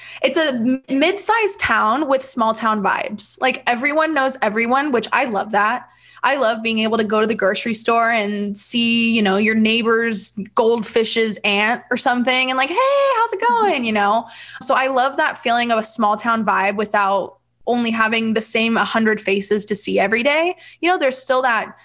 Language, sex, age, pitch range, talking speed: English, female, 20-39, 205-255 Hz, 195 wpm